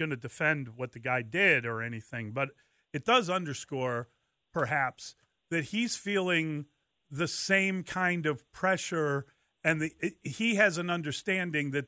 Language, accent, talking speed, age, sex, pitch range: English, American, 140 wpm, 40-59, male, 135-180 Hz